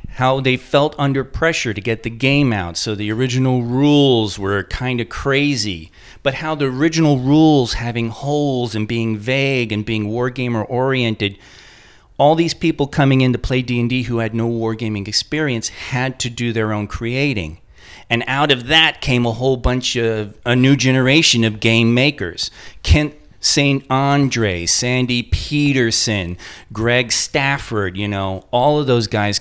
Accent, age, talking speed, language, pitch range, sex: American, 40-59, 160 wpm, English, 105-135 Hz, male